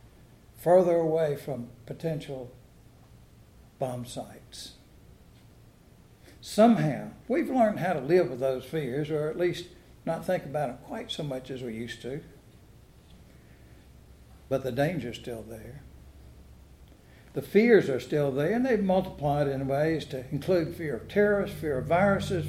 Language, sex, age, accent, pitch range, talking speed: English, male, 60-79, American, 125-200 Hz, 140 wpm